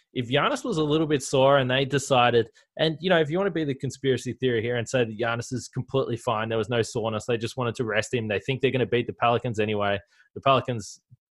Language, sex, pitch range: English, male, 120-150 Hz